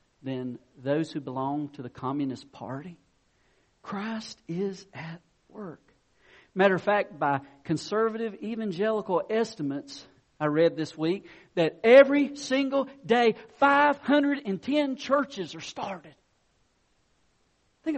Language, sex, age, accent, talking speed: English, male, 50-69, American, 105 wpm